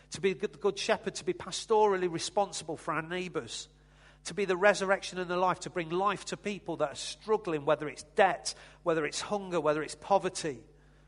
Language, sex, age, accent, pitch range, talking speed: English, male, 40-59, British, 145-185 Hz, 195 wpm